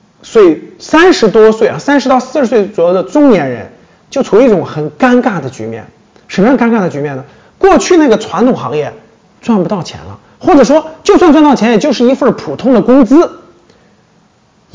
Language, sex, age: Chinese, male, 30-49